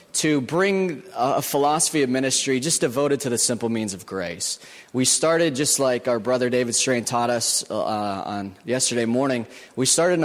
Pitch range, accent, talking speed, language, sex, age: 120-150 Hz, American, 180 wpm, English, male, 30-49